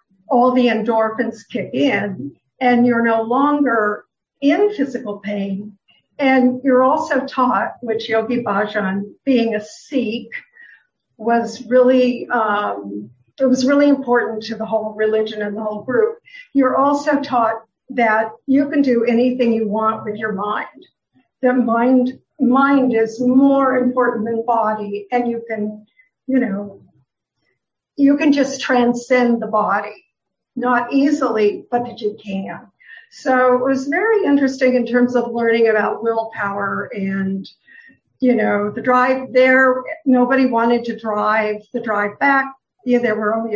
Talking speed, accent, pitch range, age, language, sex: 140 wpm, American, 220-260 Hz, 50-69, English, female